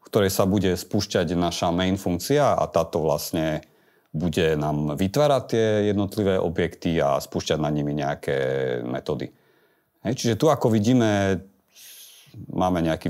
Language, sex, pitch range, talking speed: Slovak, male, 85-120 Hz, 135 wpm